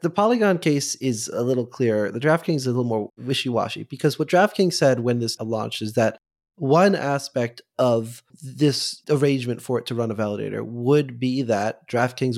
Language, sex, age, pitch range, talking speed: English, male, 20-39, 115-145 Hz, 185 wpm